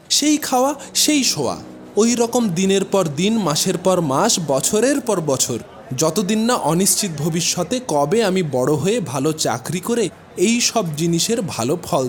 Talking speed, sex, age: 155 wpm, male, 20-39